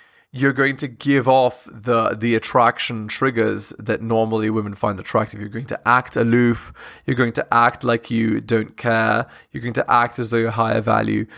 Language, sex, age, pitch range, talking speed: English, male, 20-39, 115-135 Hz, 190 wpm